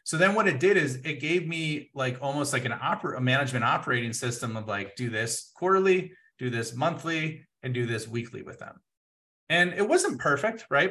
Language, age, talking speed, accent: English, 30-49, 200 wpm, American